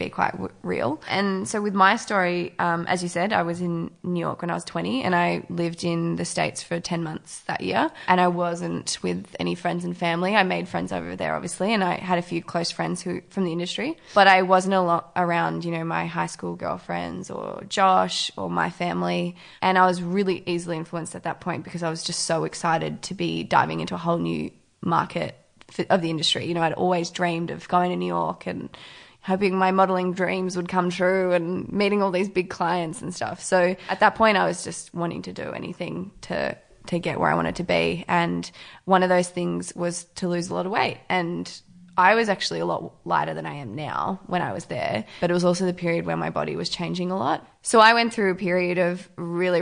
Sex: female